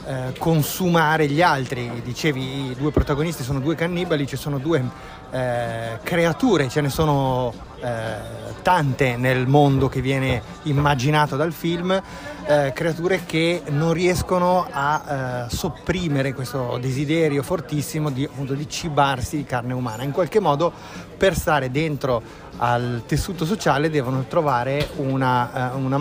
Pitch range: 130-155 Hz